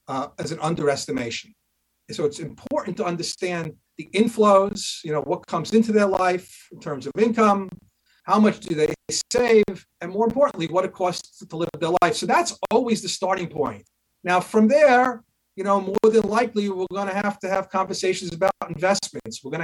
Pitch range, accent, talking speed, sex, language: 165-220 Hz, American, 195 wpm, male, English